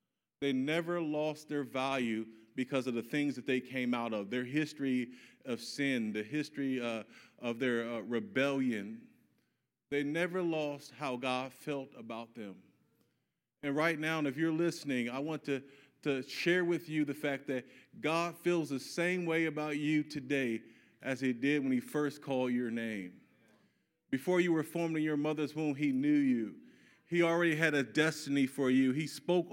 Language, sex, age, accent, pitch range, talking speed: English, male, 40-59, American, 130-165 Hz, 175 wpm